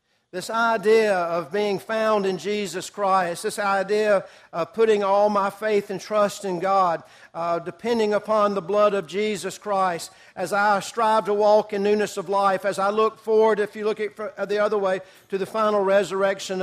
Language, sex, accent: English, male, American